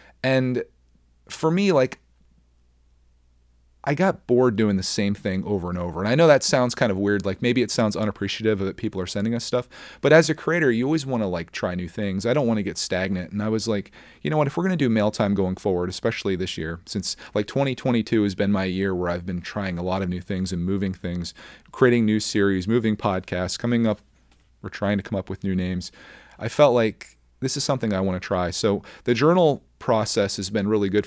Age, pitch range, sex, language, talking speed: 30-49, 95-115 Hz, male, English, 230 wpm